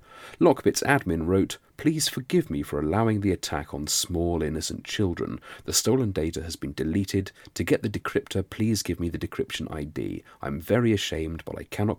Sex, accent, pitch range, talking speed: male, British, 80-115 Hz, 180 wpm